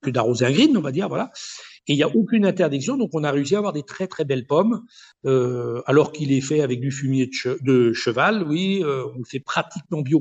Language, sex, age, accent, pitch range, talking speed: French, male, 60-79, French, 130-180 Hz, 245 wpm